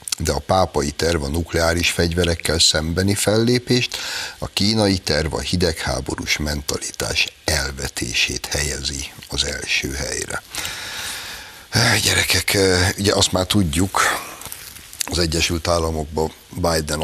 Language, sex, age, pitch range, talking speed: Hungarian, male, 60-79, 75-90 Hz, 100 wpm